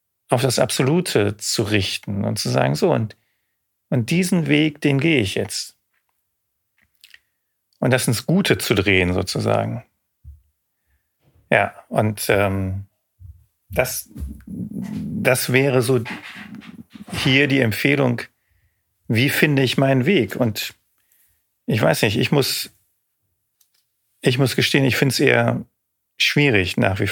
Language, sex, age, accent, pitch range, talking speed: German, male, 40-59, German, 105-140 Hz, 120 wpm